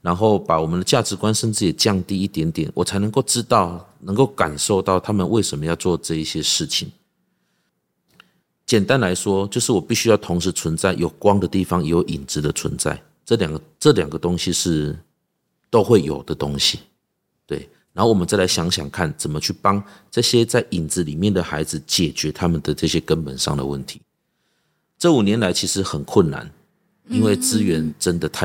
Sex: male